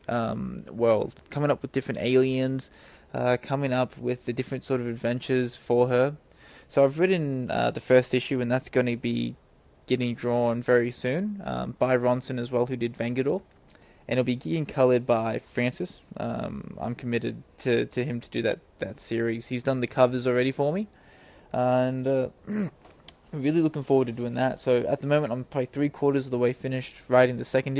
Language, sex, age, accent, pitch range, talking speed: English, male, 20-39, Australian, 120-140 Hz, 195 wpm